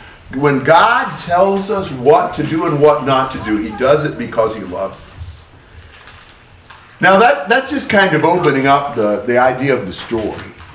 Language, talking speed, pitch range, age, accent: English, 180 wpm, 115-165 Hz, 50-69, American